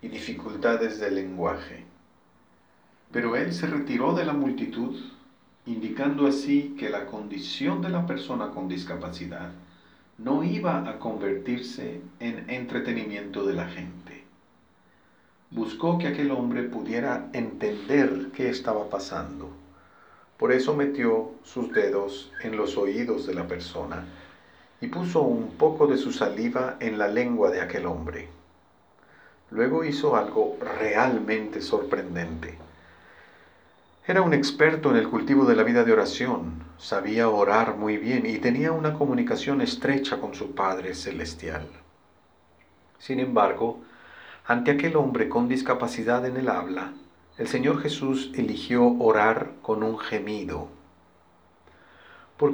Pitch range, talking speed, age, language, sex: 95-145 Hz, 125 wpm, 40-59, Spanish, male